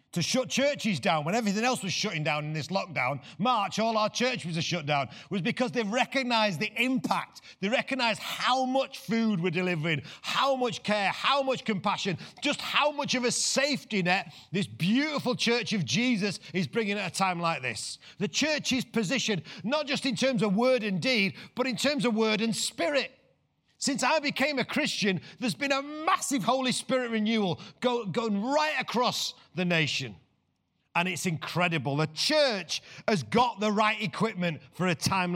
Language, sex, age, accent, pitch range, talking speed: English, male, 40-59, British, 165-235 Hz, 185 wpm